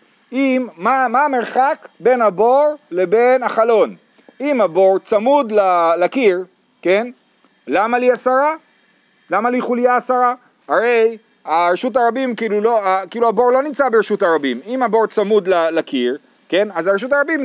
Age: 40-59